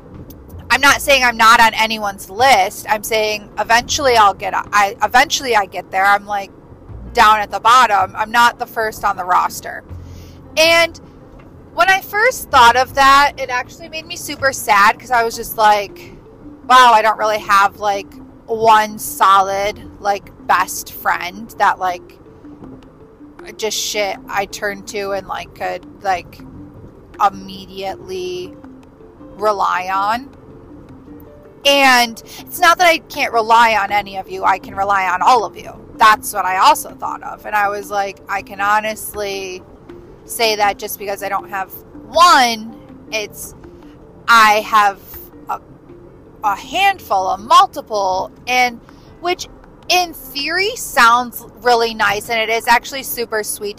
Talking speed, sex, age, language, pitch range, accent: 150 wpm, female, 30-49, English, 200-255 Hz, American